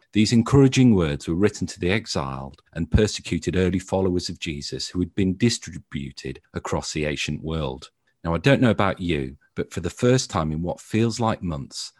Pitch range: 75-110 Hz